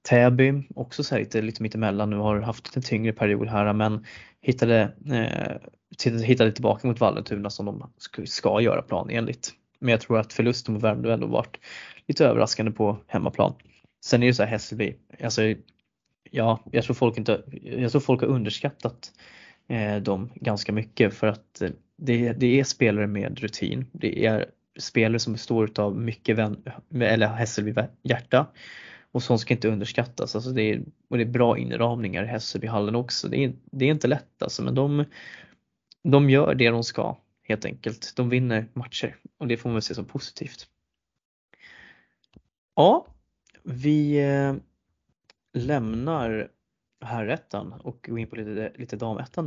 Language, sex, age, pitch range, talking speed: Swedish, male, 20-39, 110-125 Hz, 165 wpm